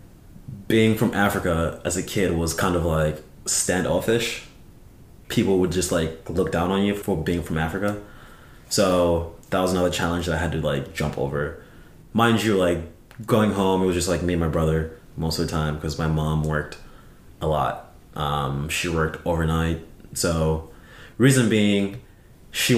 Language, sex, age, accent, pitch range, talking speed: English, male, 20-39, American, 80-95 Hz, 175 wpm